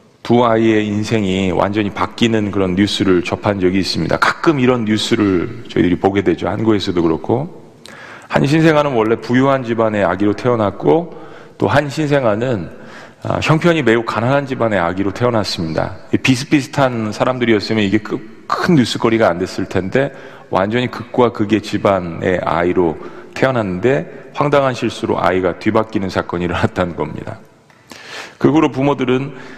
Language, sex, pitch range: Korean, male, 100-130 Hz